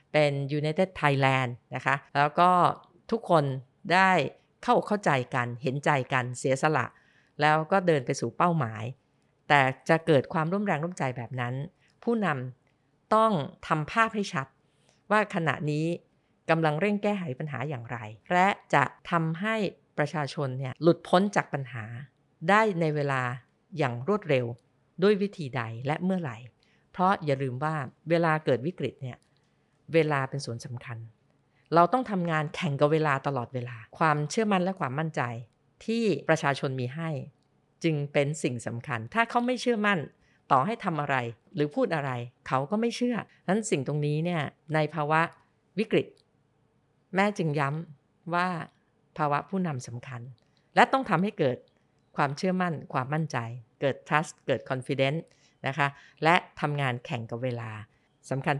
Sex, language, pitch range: female, Thai, 130-175 Hz